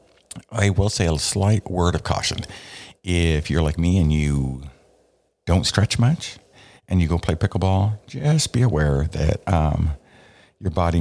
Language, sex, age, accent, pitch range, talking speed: English, male, 50-69, American, 75-100 Hz, 160 wpm